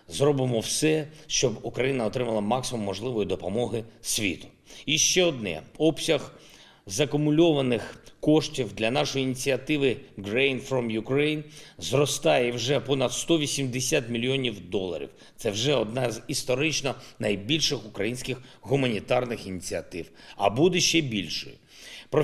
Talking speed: 110 wpm